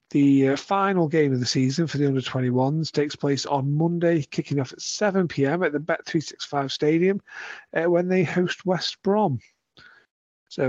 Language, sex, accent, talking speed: English, male, British, 165 wpm